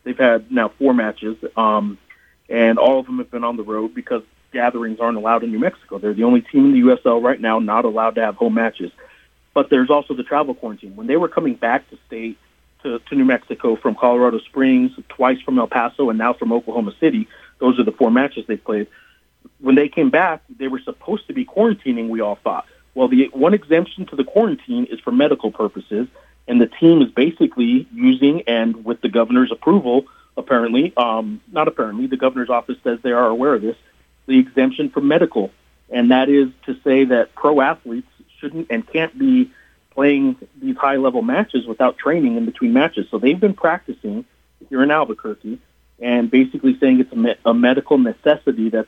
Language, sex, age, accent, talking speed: English, male, 40-59, American, 200 wpm